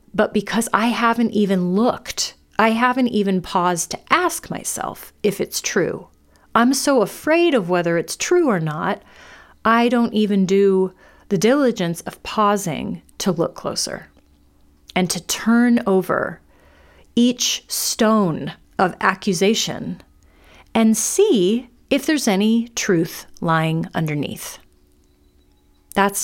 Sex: female